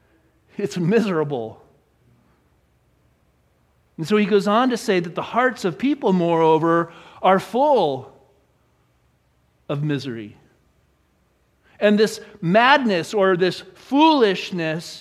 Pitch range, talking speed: 185-245 Hz, 100 wpm